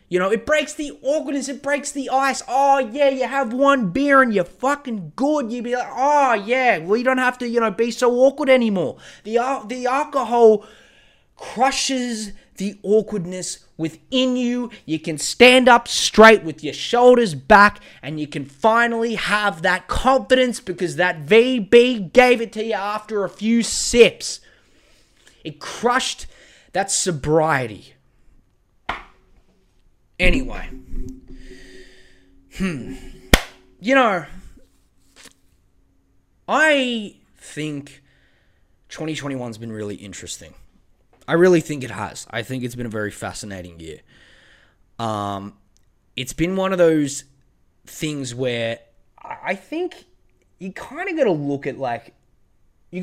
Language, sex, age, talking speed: English, male, 20-39, 135 wpm